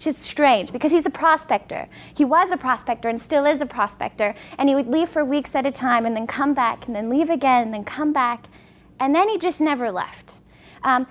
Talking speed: 240 wpm